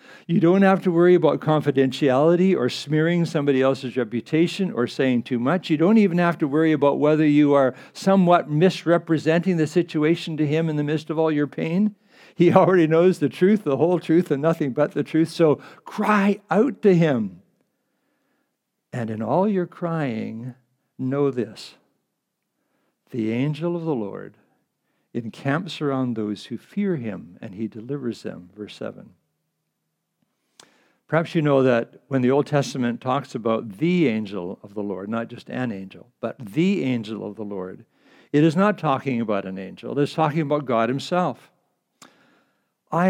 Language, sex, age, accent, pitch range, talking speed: English, male, 60-79, American, 120-170 Hz, 165 wpm